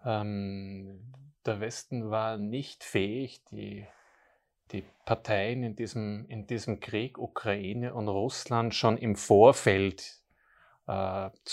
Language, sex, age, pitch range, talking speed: German, male, 30-49, 100-115 Hz, 110 wpm